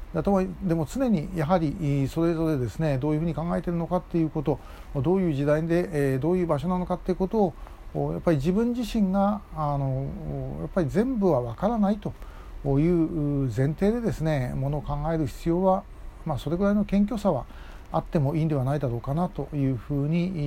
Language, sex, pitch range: Japanese, male, 130-180 Hz